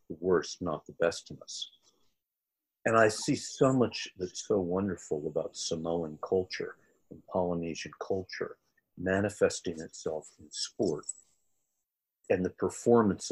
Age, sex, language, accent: 50-69, male, English, American